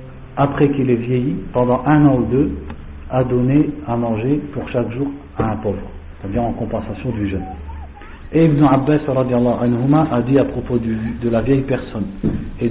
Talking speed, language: 170 wpm, French